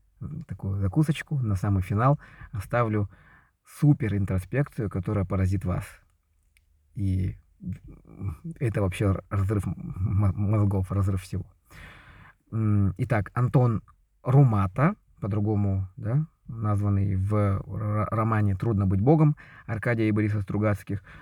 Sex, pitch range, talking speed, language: male, 100-140 Hz, 95 wpm, Russian